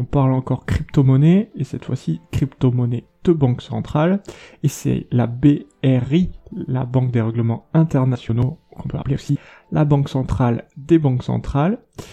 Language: French